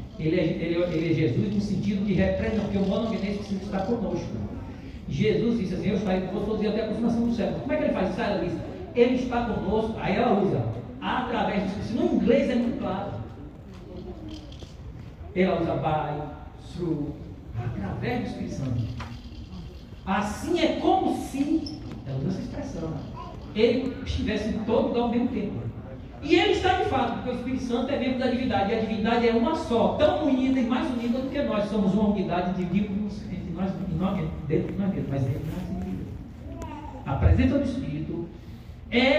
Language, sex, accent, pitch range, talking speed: Portuguese, male, Brazilian, 175-250 Hz, 190 wpm